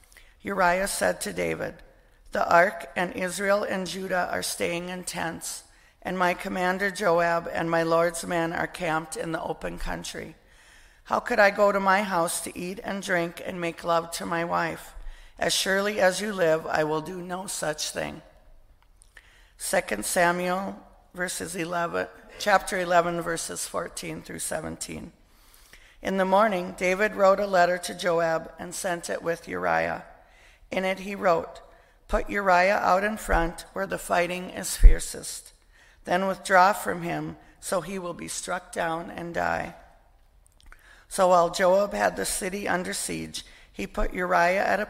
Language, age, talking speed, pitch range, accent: English, 50-69, 160 wpm, 165-185 Hz, American